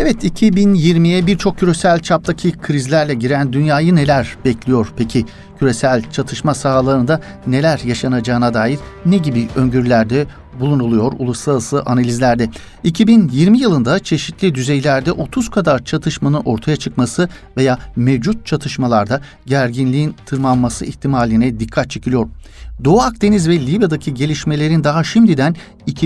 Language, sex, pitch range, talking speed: Turkish, male, 125-170 Hz, 110 wpm